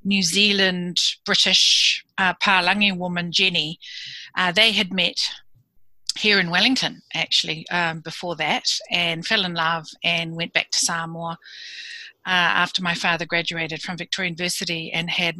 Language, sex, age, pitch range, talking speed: English, female, 40-59, 170-195 Hz, 145 wpm